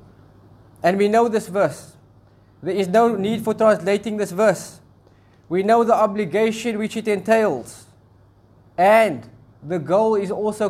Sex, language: male, English